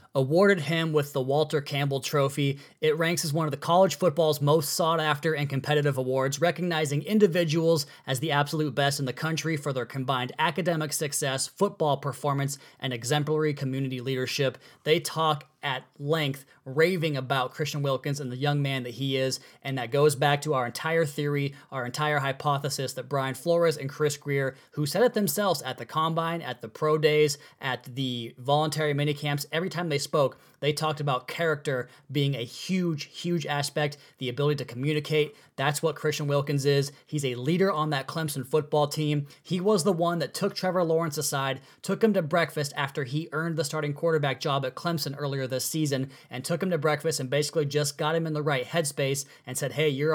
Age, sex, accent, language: 20-39, male, American, English